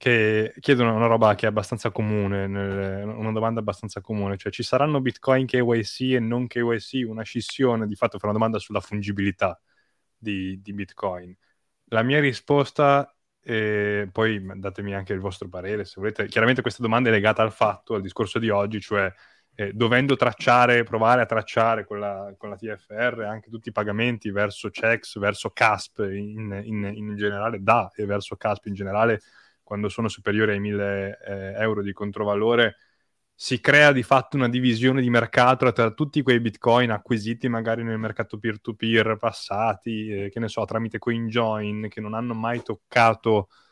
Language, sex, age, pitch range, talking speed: Italian, male, 20-39, 105-115 Hz, 165 wpm